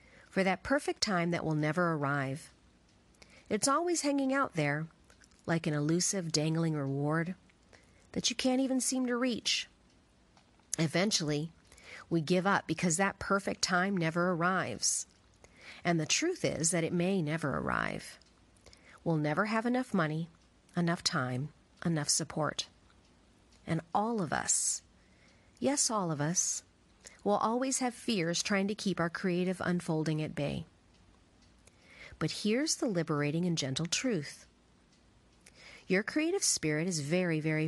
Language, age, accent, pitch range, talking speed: English, 40-59, American, 155-195 Hz, 135 wpm